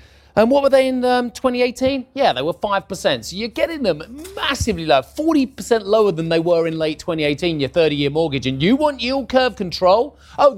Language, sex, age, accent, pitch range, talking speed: English, male, 30-49, British, 130-220 Hz, 200 wpm